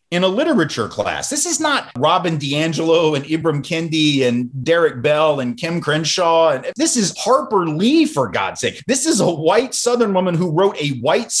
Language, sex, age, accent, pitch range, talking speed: English, male, 30-49, American, 140-190 Hz, 190 wpm